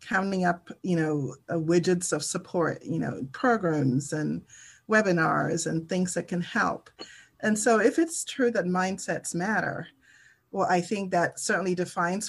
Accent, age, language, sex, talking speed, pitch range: American, 30-49, English, female, 155 wpm, 165-200 Hz